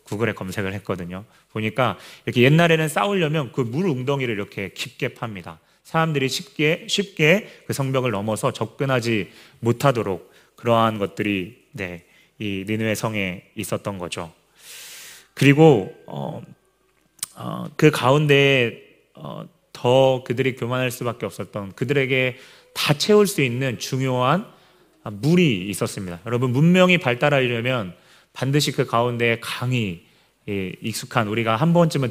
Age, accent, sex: 30-49, native, male